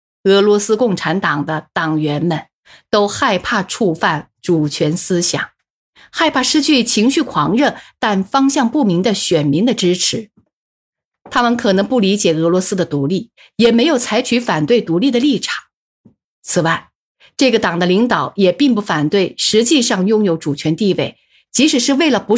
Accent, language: native, Chinese